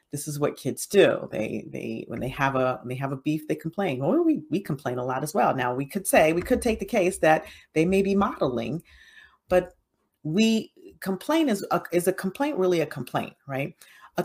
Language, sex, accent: English, female, American